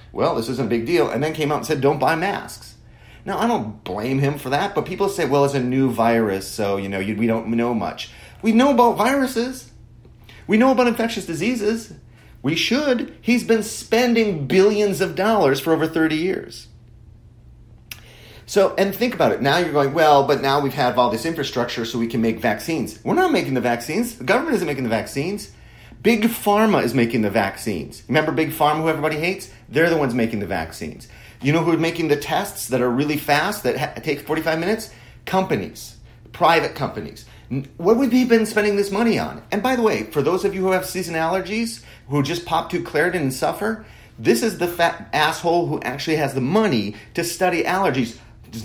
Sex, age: male, 40-59